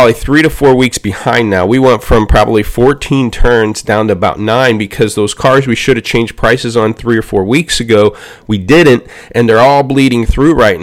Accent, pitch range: American, 105-125 Hz